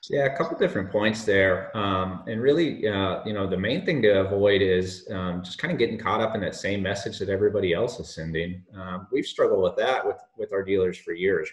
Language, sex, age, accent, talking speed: English, male, 30-49, American, 235 wpm